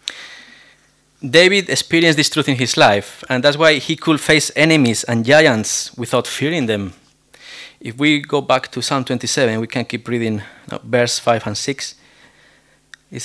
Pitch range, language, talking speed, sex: 120-145 Hz, English, 165 wpm, male